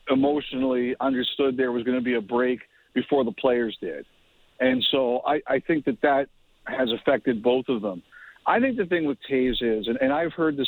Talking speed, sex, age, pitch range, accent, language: 210 wpm, male, 50-69, 130-150 Hz, American, English